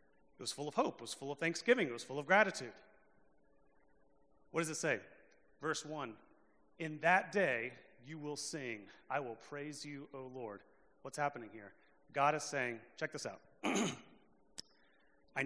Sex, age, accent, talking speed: male, 30-49, American, 165 wpm